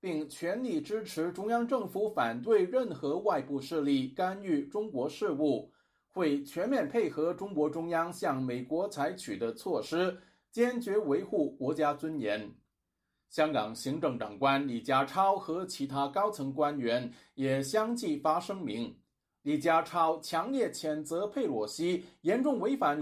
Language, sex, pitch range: Chinese, male, 140-225 Hz